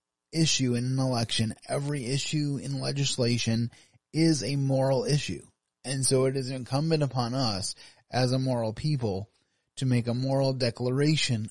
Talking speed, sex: 145 wpm, male